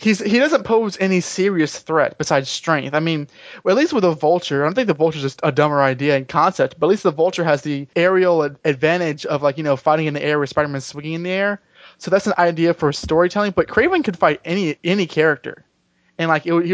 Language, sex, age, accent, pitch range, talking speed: English, male, 20-39, American, 145-180 Hz, 250 wpm